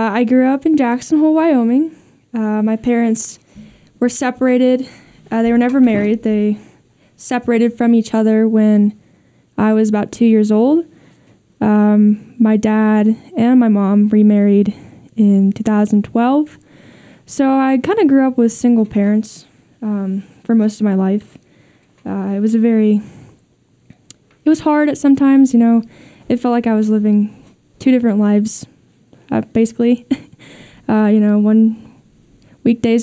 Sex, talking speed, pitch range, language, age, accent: female, 145 wpm, 215-245 Hz, English, 10-29, American